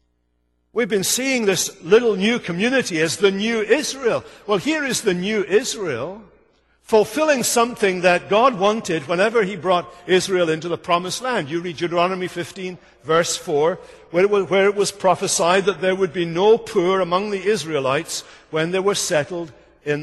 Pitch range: 160-215 Hz